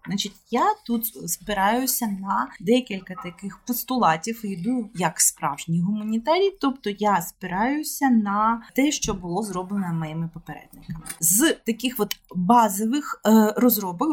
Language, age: Ukrainian, 30-49